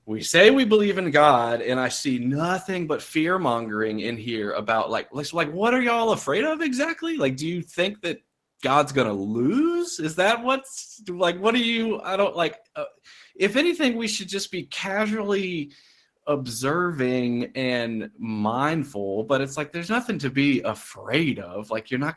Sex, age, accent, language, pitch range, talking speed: male, 30-49, American, English, 115-175 Hz, 175 wpm